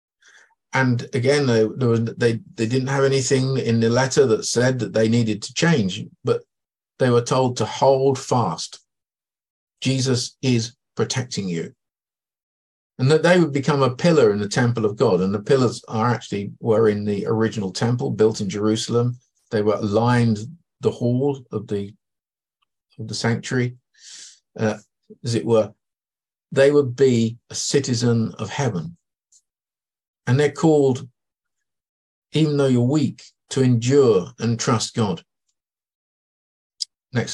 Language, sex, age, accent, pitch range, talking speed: English, male, 50-69, British, 105-135 Hz, 140 wpm